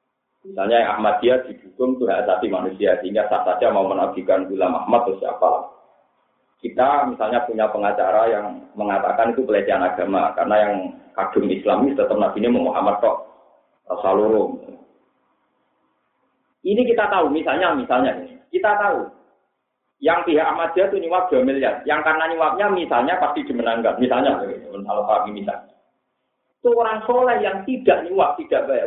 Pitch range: 165-265 Hz